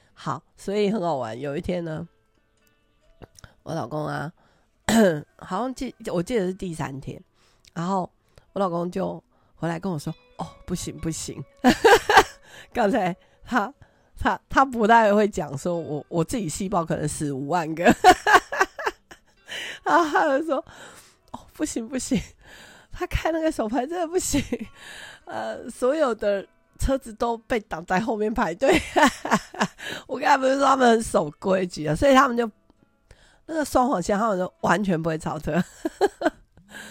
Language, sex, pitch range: Chinese, female, 180-270 Hz